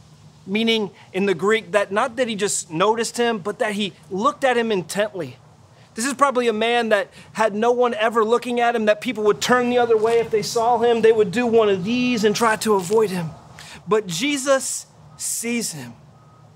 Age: 30-49